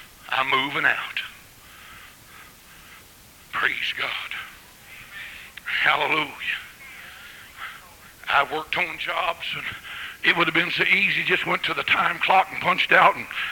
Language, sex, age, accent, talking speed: English, male, 60-79, American, 115 wpm